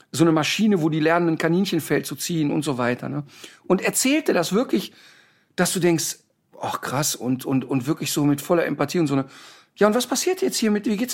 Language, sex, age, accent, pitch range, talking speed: German, male, 50-69, German, 145-200 Hz, 230 wpm